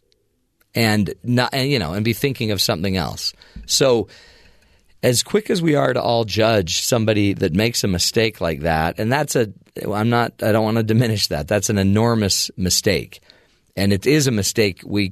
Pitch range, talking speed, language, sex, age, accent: 90-120 Hz, 190 wpm, English, male, 40-59, American